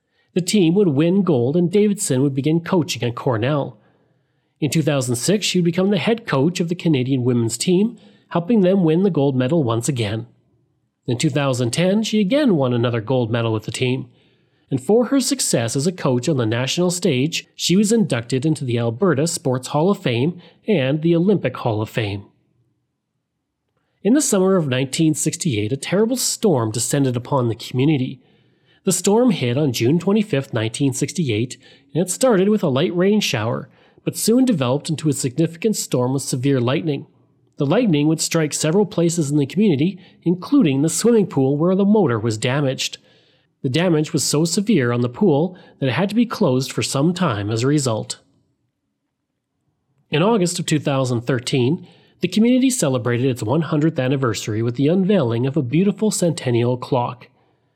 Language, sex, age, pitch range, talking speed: English, male, 40-59, 130-185 Hz, 170 wpm